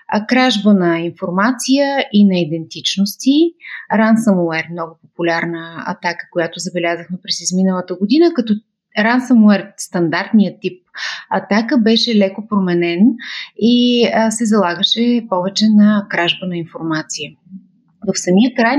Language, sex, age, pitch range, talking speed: Bulgarian, female, 30-49, 180-230 Hz, 115 wpm